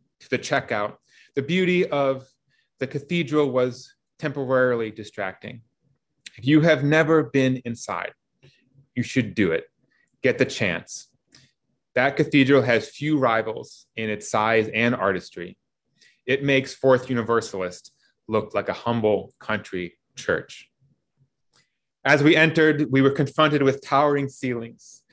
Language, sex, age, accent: English, male, 30-49, American